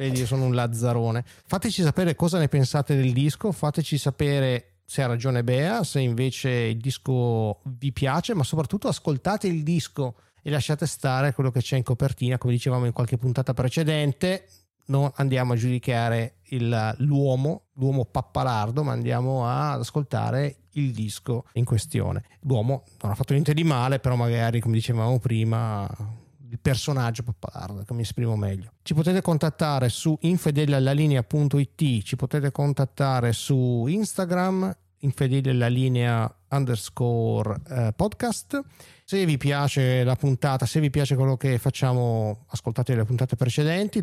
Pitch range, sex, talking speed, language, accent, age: 120-145 Hz, male, 140 wpm, Italian, native, 30-49